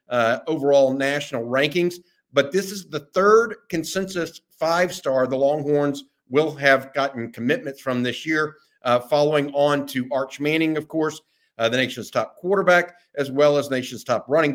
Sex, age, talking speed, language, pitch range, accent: male, 50-69, 160 wpm, English, 135-165 Hz, American